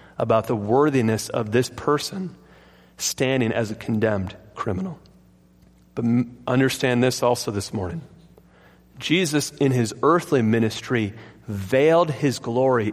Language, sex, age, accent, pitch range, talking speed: English, male, 40-59, American, 115-150 Hz, 115 wpm